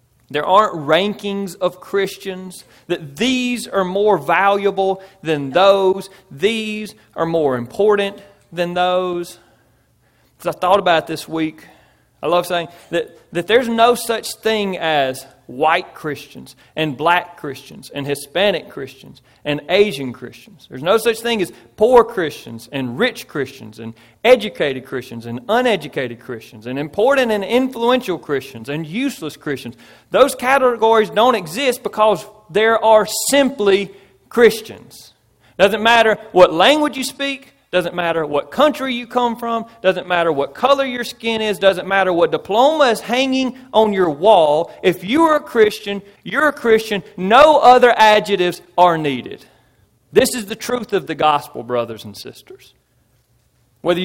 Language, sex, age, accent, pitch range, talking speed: English, male, 40-59, American, 145-225 Hz, 145 wpm